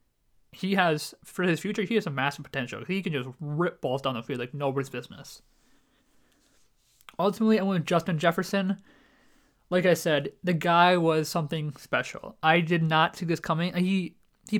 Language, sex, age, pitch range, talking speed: English, male, 20-39, 140-180 Hz, 175 wpm